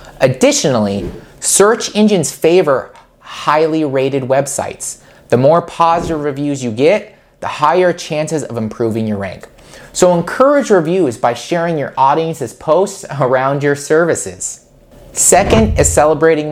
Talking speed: 125 wpm